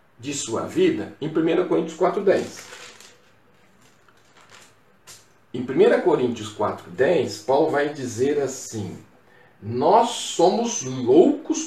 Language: Portuguese